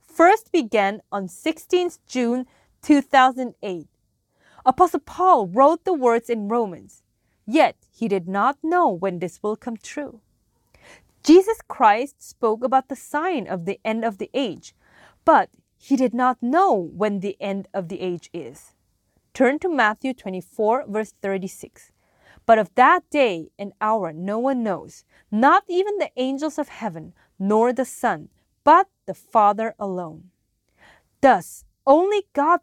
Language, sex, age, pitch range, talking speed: English, female, 30-49, 200-295 Hz, 145 wpm